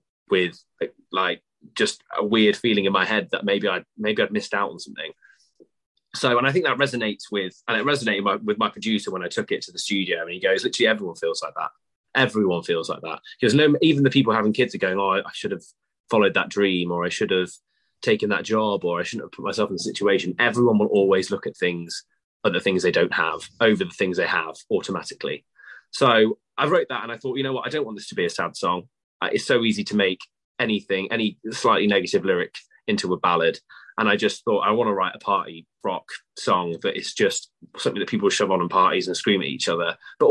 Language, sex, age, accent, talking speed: English, male, 20-39, British, 245 wpm